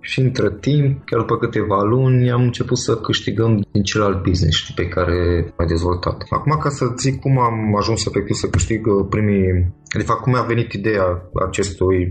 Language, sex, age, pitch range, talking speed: Romanian, male, 20-39, 95-130 Hz, 185 wpm